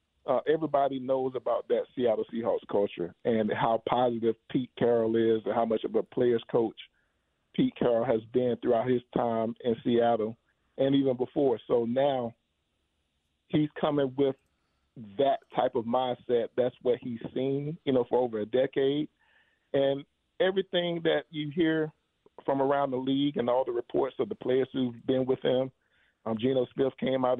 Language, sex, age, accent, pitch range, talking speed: English, male, 40-59, American, 115-140 Hz, 170 wpm